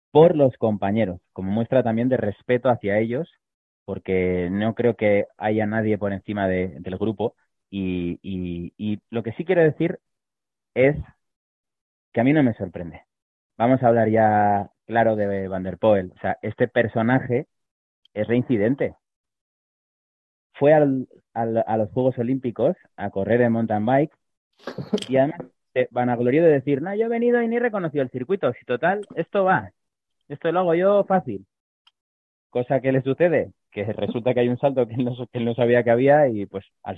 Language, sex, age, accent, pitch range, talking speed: Spanish, male, 30-49, Spanish, 105-140 Hz, 180 wpm